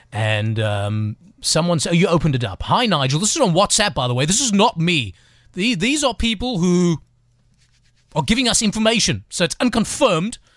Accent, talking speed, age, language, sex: British, 195 wpm, 30-49, English, male